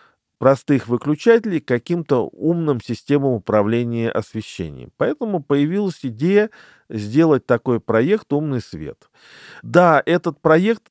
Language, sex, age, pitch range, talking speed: Russian, male, 40-59, 115-155 Hz, 100 wpm